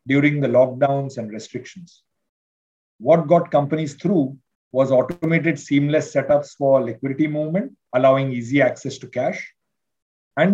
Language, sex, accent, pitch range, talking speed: English, male, Indian, 135-160 Hz, 125 wpm